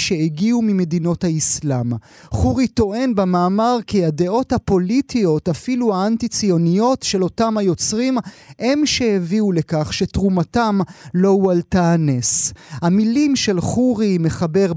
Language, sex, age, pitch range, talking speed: Hebrew, male, 30-49, 175-225 Hz, 100 wpm